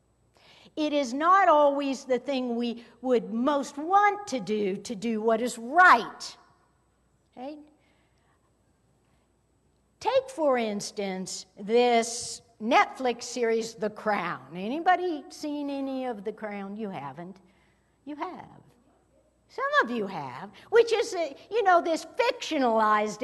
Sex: female